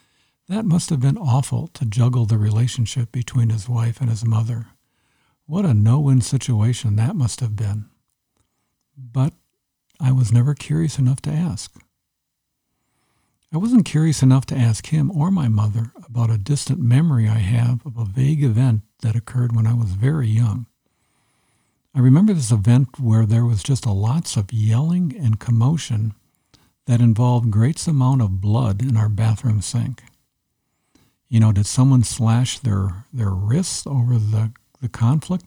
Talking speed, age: 160 wpm, 60-79